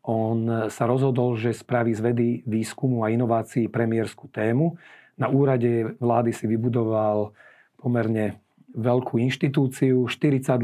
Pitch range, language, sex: 115-130 Hz, Slovak, male